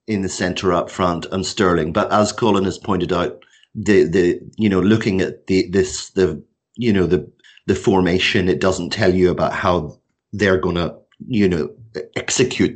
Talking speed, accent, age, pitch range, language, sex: 185 wpm, British, 40-59, 95-115 Hz, English, male